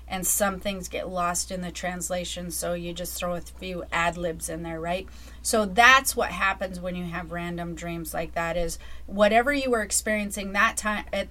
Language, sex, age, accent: English, female, 30-49, American